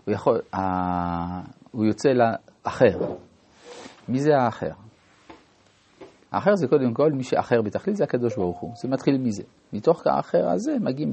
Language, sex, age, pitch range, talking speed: Hebrew, male, 50-69, 110-150 Hz, 130 wpm